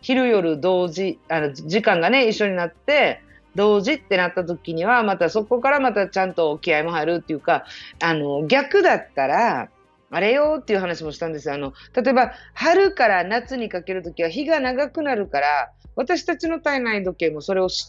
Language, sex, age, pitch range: Japanese, female, 40-59, 170-270 Hz